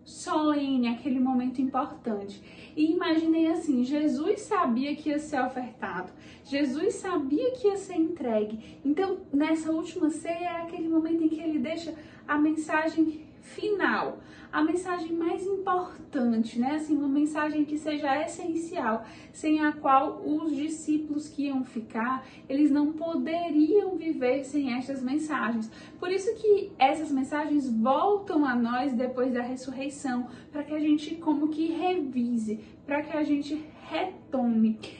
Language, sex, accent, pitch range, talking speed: Portuguese, female, Brazilian, 245-320 Hz, 140 wpm